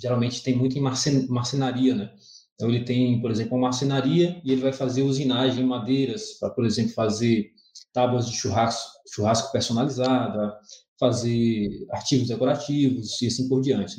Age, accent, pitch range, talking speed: 20-39, Brazilian, 120-155 Hz, 160 wpm